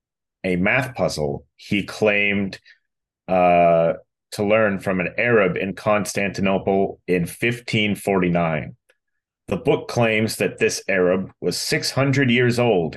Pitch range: 95-125 Hz